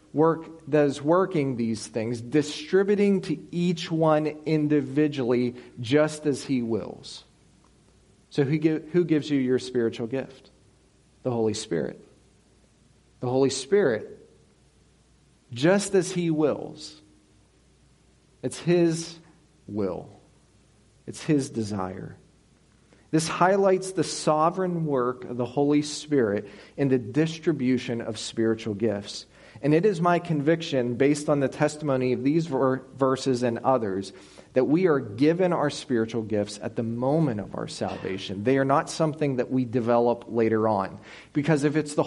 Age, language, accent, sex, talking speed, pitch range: 40-59, English, American, male, 135 wpm, 115-155 Hz